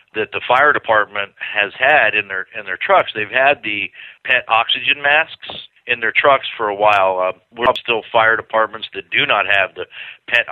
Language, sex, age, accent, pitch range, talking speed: English, male, 50-69, American, 105-125 Hz, 195 wpm